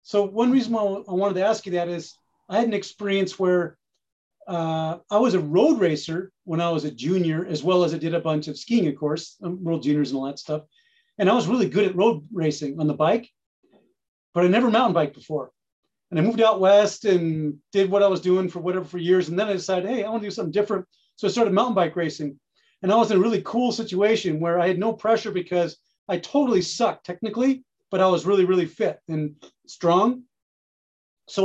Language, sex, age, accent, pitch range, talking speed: English, male, 30-49, American, 170-205 Hz, 230 wpm